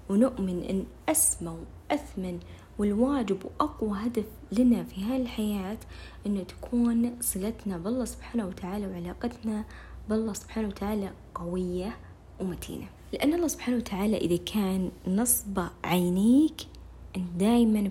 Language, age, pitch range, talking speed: Arabic, 20-39, 185-225 Hz, 110 wpm